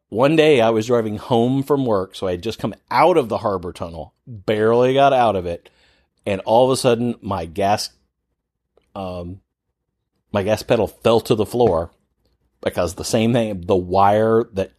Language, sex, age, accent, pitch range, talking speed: English, male, 40-59, American, 95-115 Hz, 185 wpm